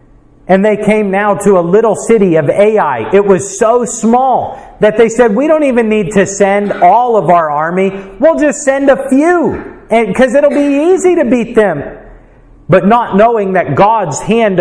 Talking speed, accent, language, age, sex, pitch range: 185 wpm, American, English, 50-69, male, 185-225 Hz